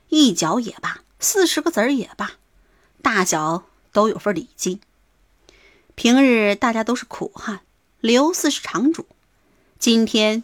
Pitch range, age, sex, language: 200-300 Hz, 30-49, female, Chinese